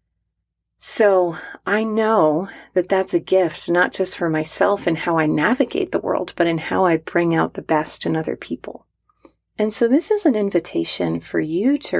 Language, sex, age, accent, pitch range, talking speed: English, female, 30-49, American, 160-185 Hz, 185 wpm